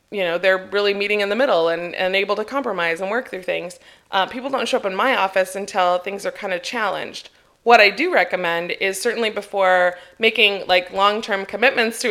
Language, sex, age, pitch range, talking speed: English, female, 20-39, 190-240 Hz, 220 wpm